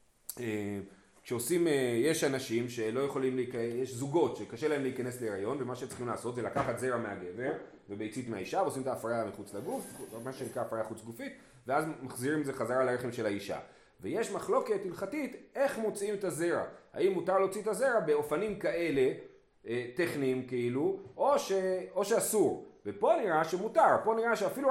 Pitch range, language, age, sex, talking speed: 125-205 Hz, Hebrew, 30-49, male, 160 wpm